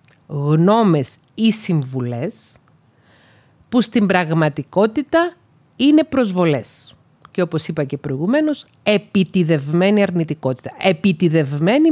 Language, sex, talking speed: Greek, female, 80 wpm